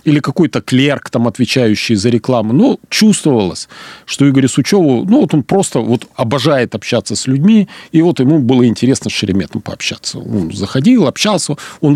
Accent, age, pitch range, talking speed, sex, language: native, 40-59, 100-130 Hz, 155 wpm, male, Russian